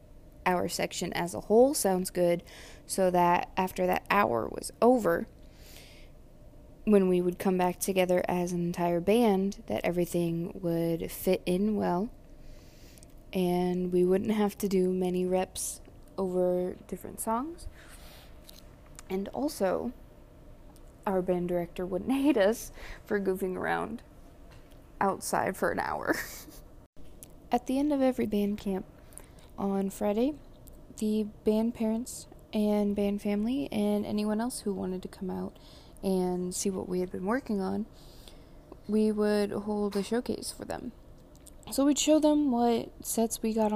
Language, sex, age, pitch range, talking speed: English, female, 20-39, 180-215 Hz, 140 wpm